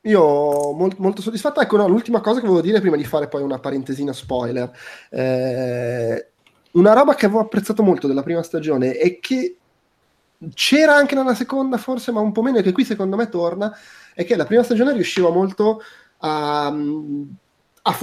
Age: 20-39